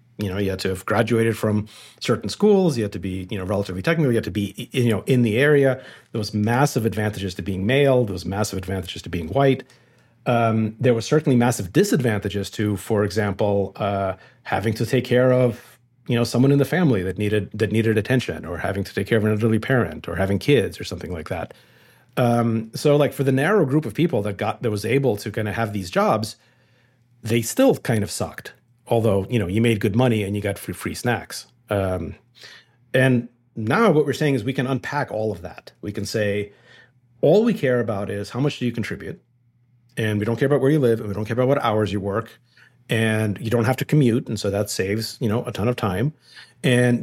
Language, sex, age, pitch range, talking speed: English, male, 40-59, 105-130 Hz, 230 wpm